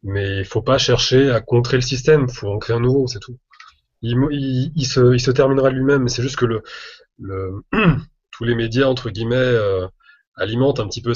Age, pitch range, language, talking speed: 20-39, 105-130 Hz, French, 210 wpm